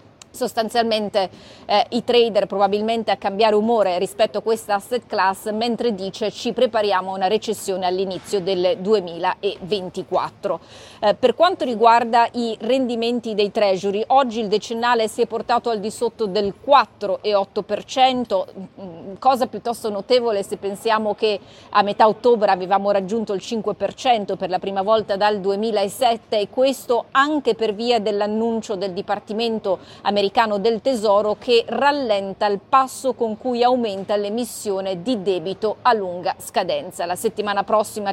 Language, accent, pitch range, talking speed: Italian, native, 200-240 Hz, 140 wpm